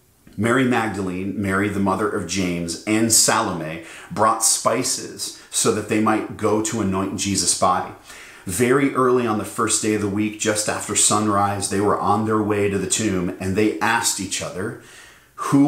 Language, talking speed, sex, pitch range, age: English, 175 wpm, male, 95-115 Hz, 40-59